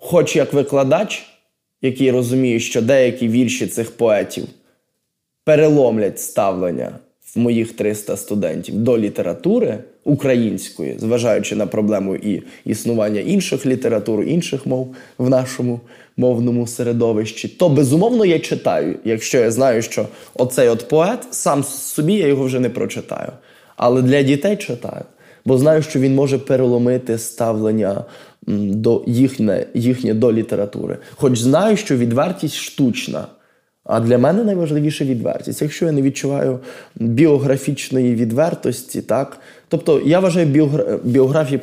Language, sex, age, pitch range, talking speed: Ukrainian, male, 20-39, 120-145 Hz, 125 wpm